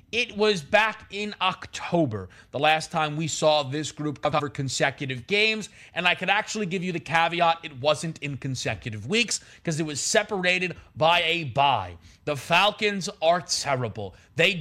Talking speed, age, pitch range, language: 165 wpm, 30-49, 125-180 Hz, English